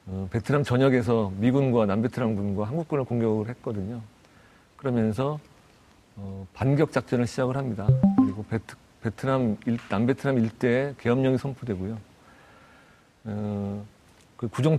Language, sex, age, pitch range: Korean, male, 40-59, 110-140 Hz